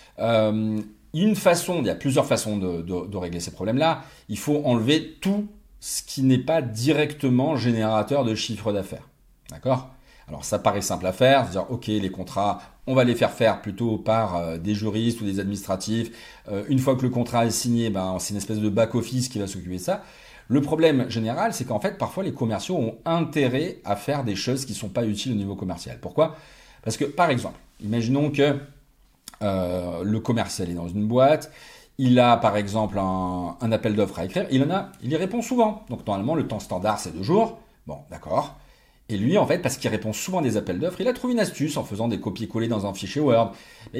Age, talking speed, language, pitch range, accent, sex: 40-59, 215 wpm, French, 105-145 Hz, French, male